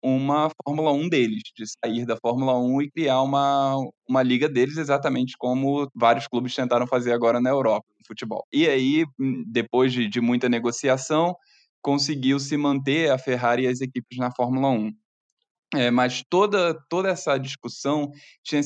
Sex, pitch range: male, 130-185 Hz